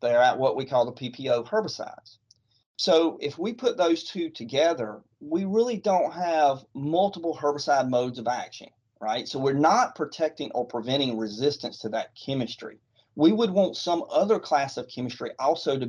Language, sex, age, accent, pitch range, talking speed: English, male, 40-59, American, 115-155 Hz, 170 wpm